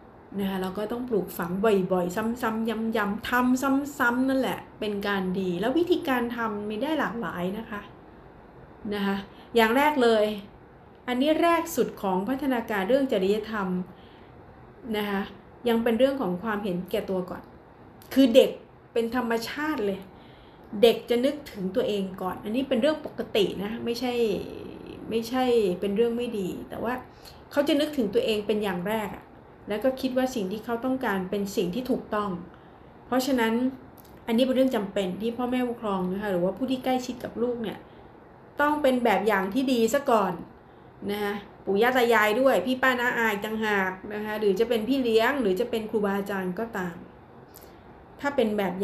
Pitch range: 200-250 Hz